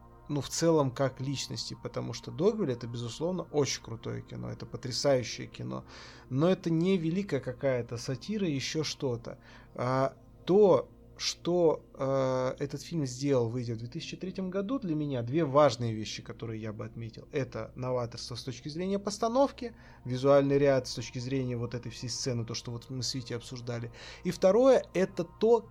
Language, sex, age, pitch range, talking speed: Russian, male, 20-39, 120-165 Hz, 165 wpm